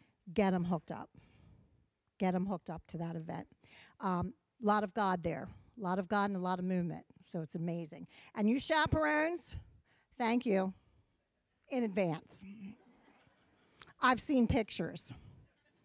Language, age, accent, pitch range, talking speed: English, 50-69, American, 190-255 Hz, 150 wpm